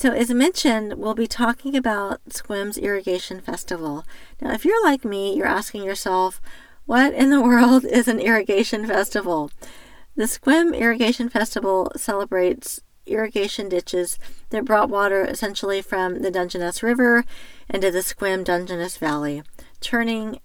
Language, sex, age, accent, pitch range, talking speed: English, female, 40-59, American, 185-235 Hz, 140 wpm